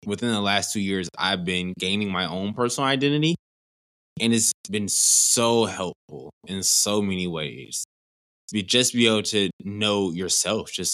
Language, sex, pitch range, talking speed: English, male, 90-110 Hz, 160 wpm